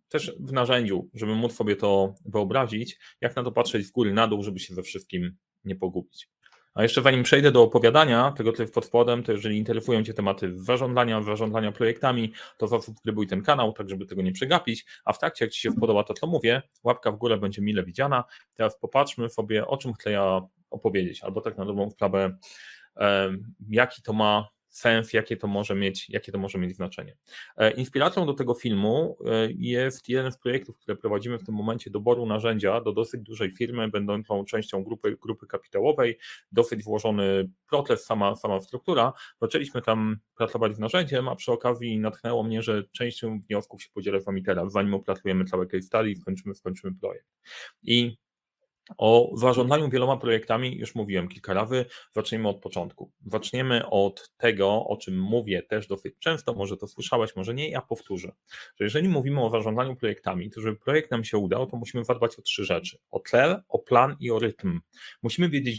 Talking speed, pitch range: 185 wpm, 100-125 Hz